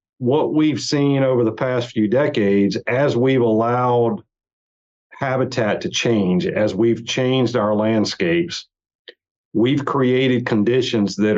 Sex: male